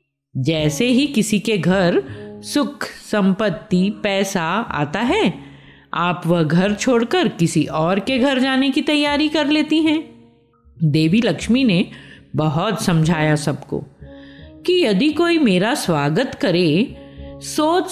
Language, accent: Hindi, native